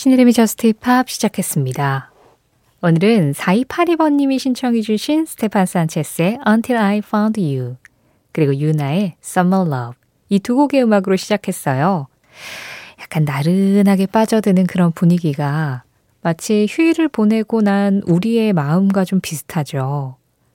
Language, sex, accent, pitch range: Korean, female, native, 155-225 Hz